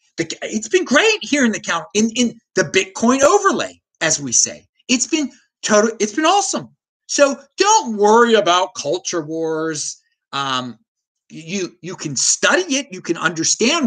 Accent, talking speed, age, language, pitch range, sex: American, 155 wpm, 30-49, English, 180-295 Hz, male